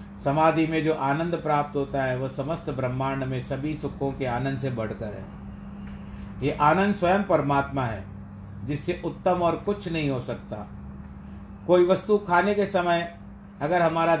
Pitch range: 135-180 Hz